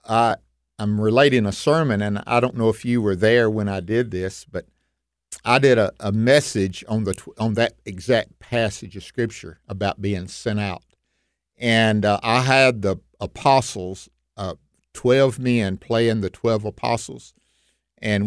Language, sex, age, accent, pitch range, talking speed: English, male, 50-69, American, 95-120 Hz, 160 wpm